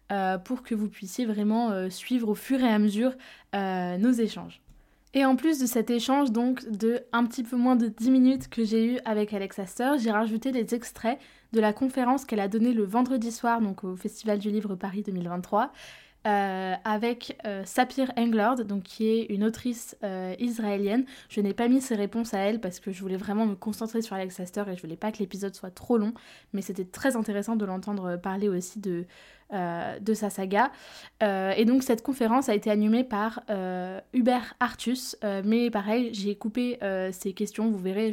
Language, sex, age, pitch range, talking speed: French, female, 20-39, 200-235 Hz, 205 wpm